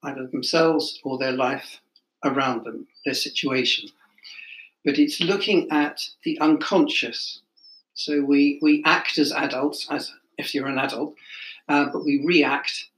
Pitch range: 140-170 Hz